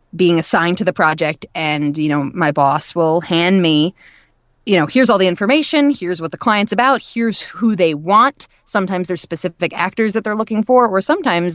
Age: 20-39